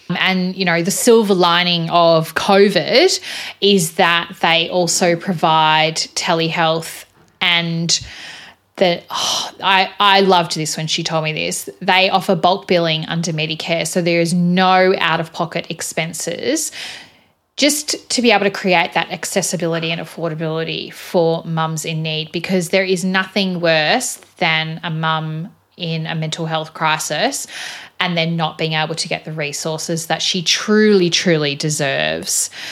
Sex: female